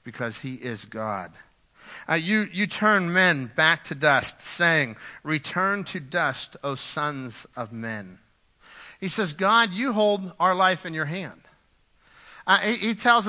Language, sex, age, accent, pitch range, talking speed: English, male, 50-69, American, 155-200 Hz, 155 wpm